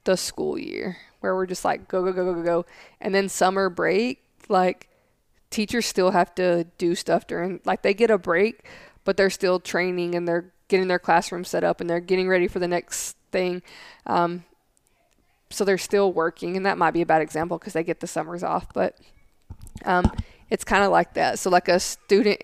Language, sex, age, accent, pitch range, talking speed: English, female, 20-39, American, 175-195 Hz, 205 wpm